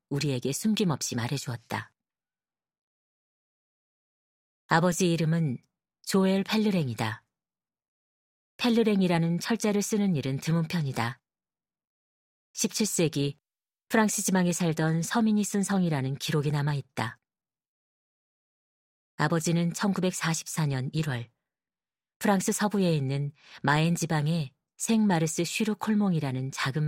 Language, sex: Korean, female